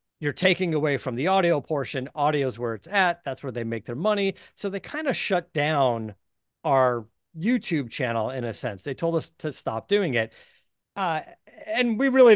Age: 40-59